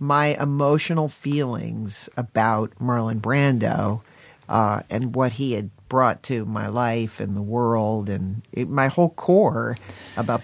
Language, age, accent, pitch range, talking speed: English, 50-69, American, 110-145 Hz, 130 wpm